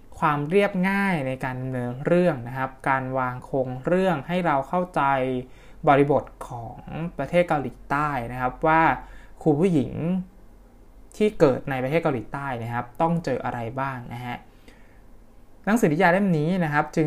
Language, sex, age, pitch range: Thai, male, 20-39, 130-165 Hz